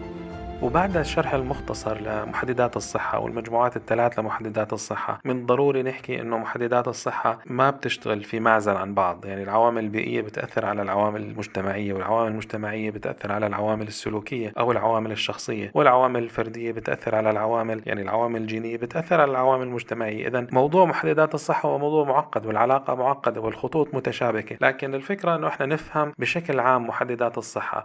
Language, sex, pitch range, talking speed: Arabic, male, 110-130 Hz, 150 wpm